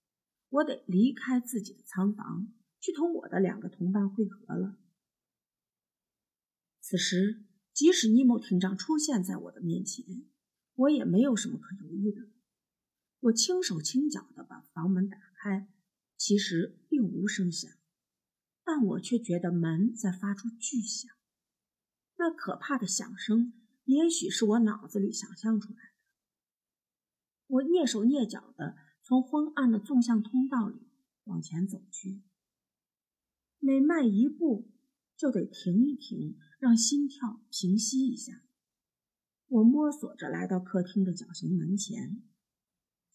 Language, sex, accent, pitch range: Chinese, female, native, 195-255 Hz